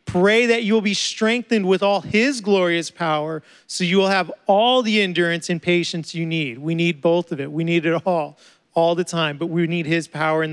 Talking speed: 230 wpm